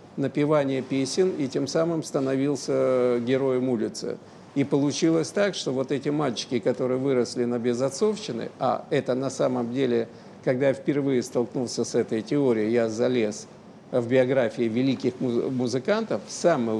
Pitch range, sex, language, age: 125-155 Hz, male, Russian, 50-69